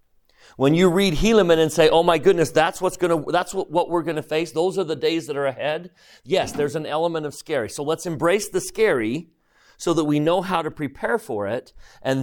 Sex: male